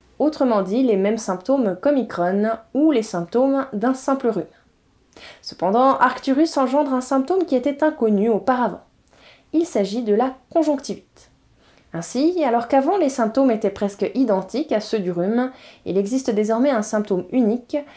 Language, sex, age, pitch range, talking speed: French, female, 20-39, 205-265 Hz, 150 wpm